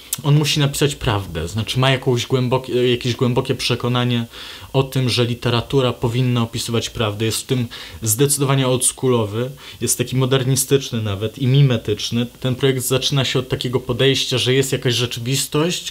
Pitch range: 105-130 Hz